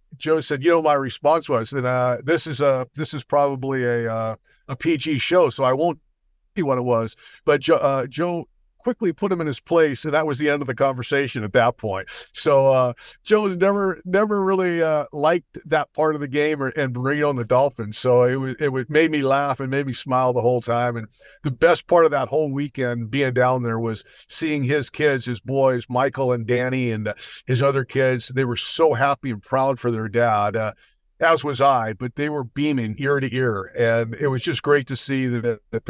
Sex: male